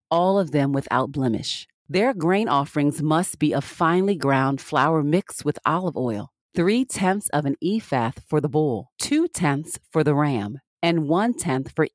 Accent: American